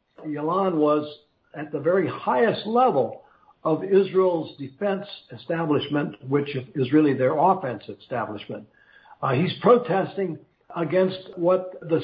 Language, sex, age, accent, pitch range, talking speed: English, male, 60-79, American, 140-175 Hz, 115 wpm